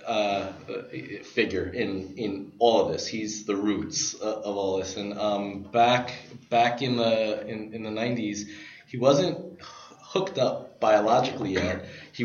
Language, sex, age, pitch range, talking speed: English, male, 20-39, 100-125 Hz, 145 wpm